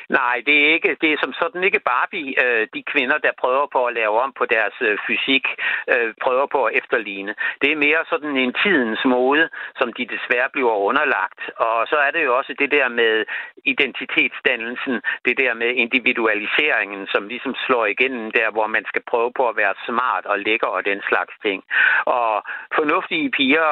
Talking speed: 180 wpm